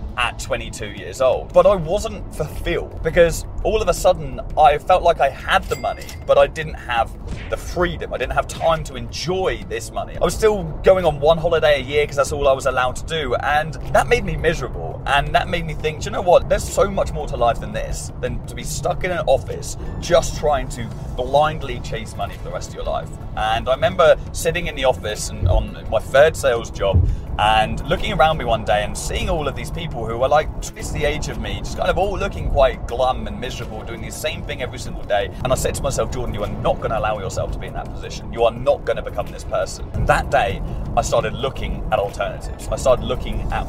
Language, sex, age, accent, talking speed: English, male, 20-39, British, 245 wpm